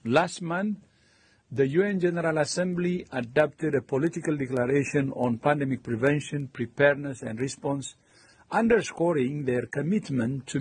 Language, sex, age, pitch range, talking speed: English, male, 60-79, 120-160 Hz, 115 wpm